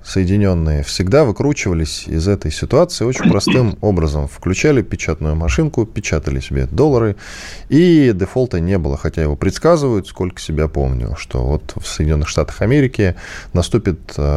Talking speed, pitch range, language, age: 135 wpm, 80-125 Hz, Russian, 10-29